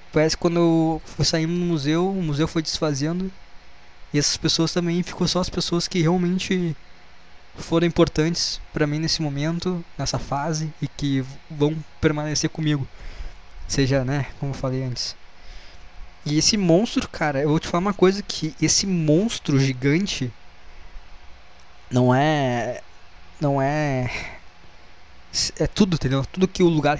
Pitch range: 125-155 Hz